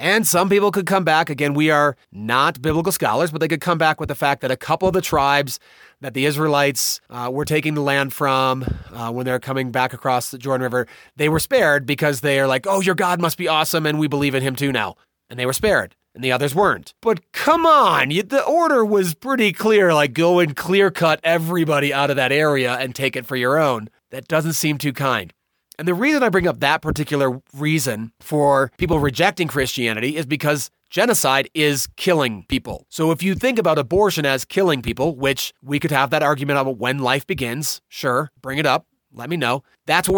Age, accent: 30-49, American